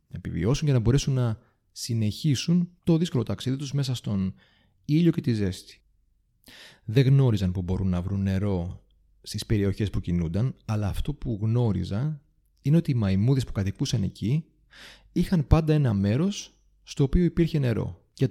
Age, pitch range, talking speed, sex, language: 30-49, 100-150 Hz, 150 wpm, male, Greek